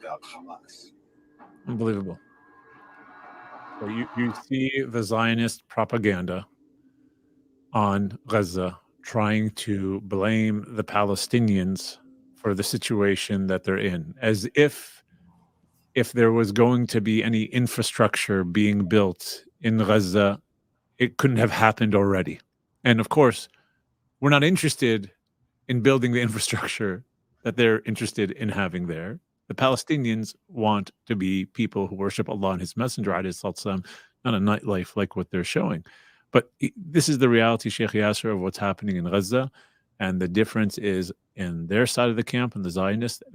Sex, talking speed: male, 140 wpm